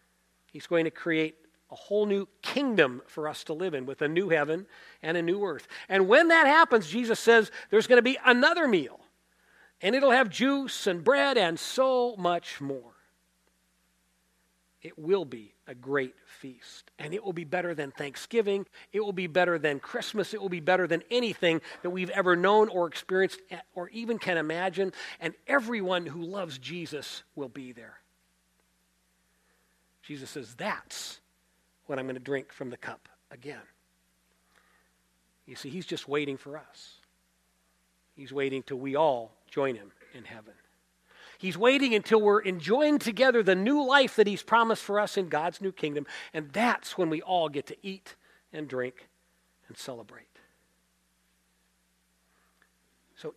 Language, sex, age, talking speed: English, male, 40-59, 165 wpm